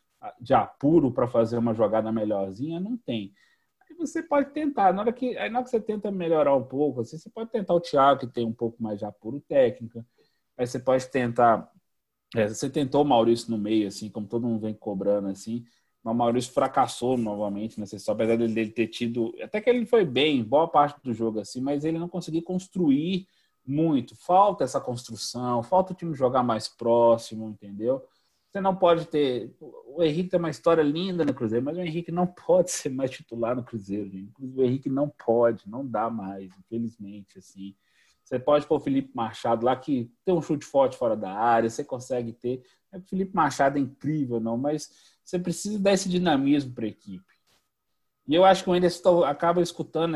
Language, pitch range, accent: Portuguese, 115-170 Hz, Brazilian